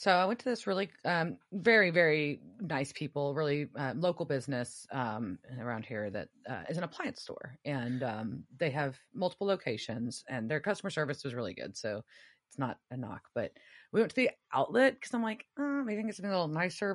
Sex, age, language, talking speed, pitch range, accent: female, 30-49, English, 200 wpm, 135-185 Hz, American